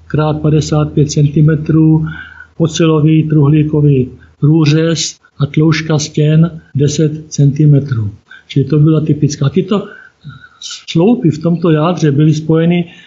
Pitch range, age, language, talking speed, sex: 150-165 Hz, 50-69, Czech, 110 wpm, male